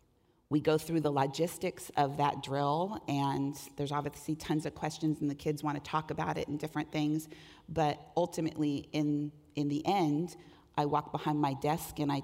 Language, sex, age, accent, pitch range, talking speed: English, female, 40-59, American, 150-170 Hz, 185 wpm